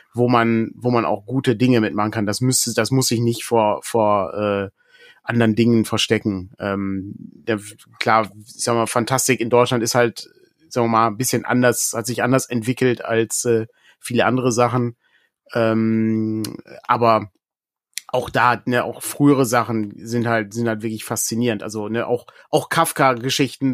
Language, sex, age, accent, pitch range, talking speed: German, male, 30-49, German, 115-140 Hz, 165 wpm